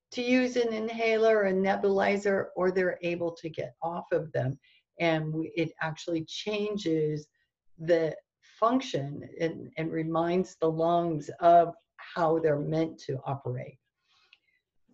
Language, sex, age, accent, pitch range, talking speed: English, female, 50-69, American, 160-200 Hz, 125 wpm